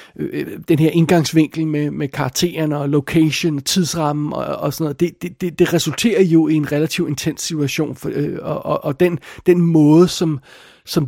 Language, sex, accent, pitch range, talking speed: Danish, male, native, 145-180 Hz, 180 wpm